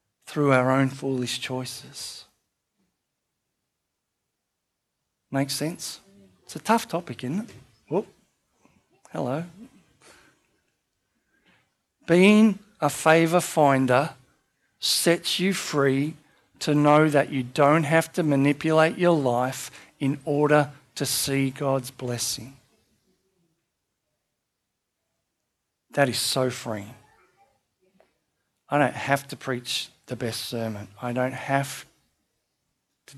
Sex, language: male, English